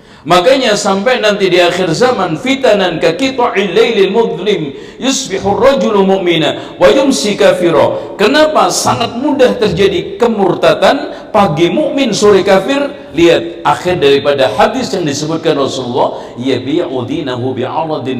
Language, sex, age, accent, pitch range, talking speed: Indonesian, male, 50-69, native, 140-220 Hz, 80 wpm